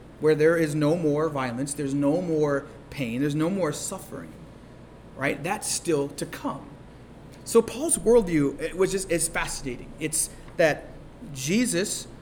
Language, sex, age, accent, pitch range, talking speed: English, male, 30-49, American, 140-190 Hz, 135 wpm